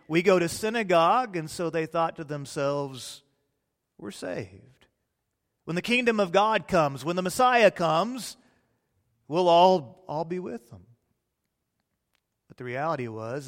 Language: English